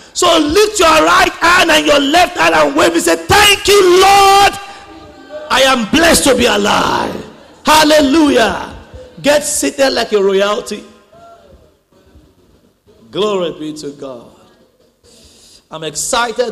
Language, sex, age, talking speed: English, male, 50-69, 125 wpm